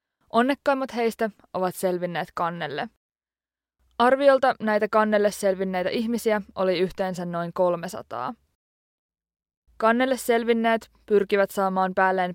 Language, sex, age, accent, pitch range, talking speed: Finnish, female, 20-39, native, 185-225 Hz, 90 wpm